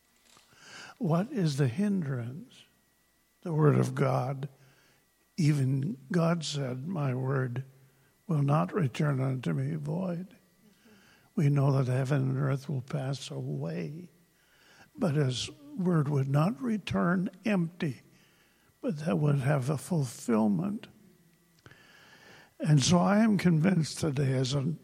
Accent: American